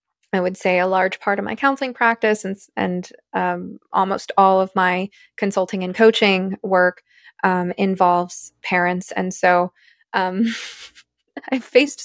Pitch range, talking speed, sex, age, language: 185-215 Hz, 145 wpm, female, 20-39, English